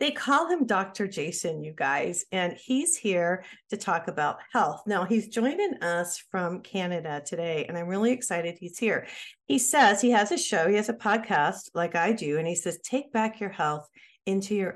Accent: American